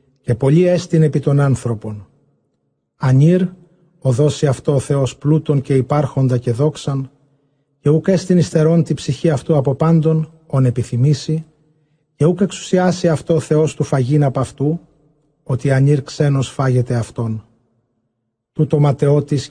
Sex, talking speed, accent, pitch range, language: male, 125 wpm, native, 130-155 Hz, Greek